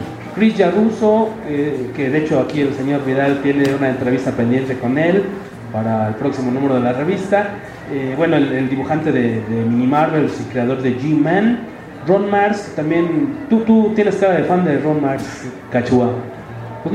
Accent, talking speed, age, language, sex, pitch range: Mexican, 175 wpm, 30-49, English, male, 135-200 Hz